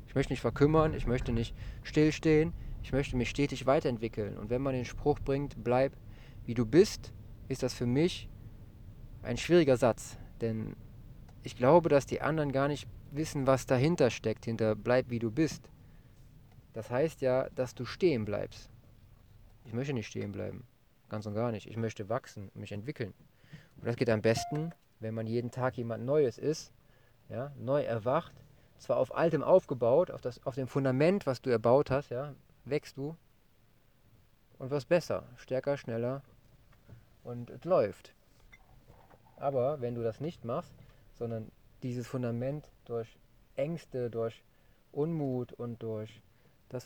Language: German